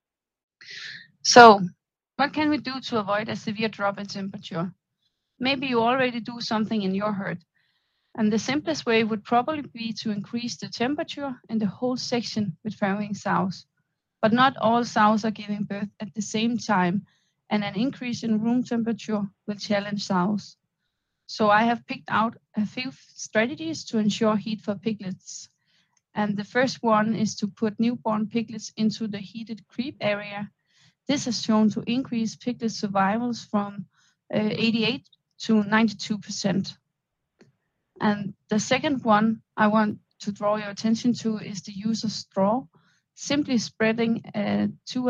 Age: 30-49